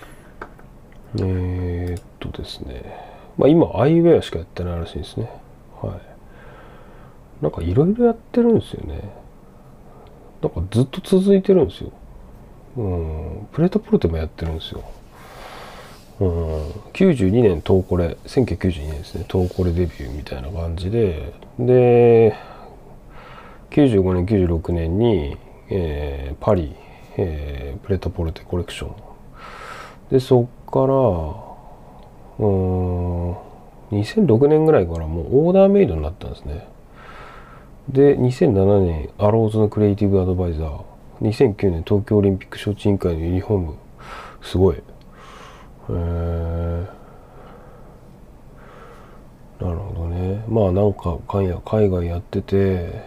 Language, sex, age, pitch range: Japanese, male, 40-59, 85-110 Hz